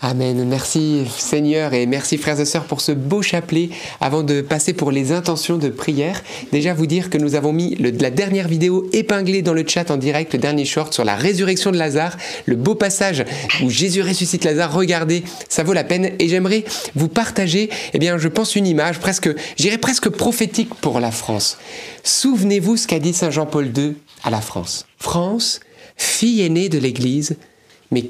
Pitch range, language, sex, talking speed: 145-195 Hz, French, male, 190 wpm